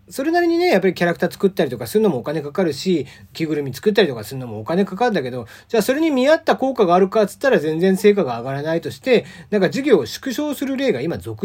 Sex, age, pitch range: male, 40-59, 145-220 Hz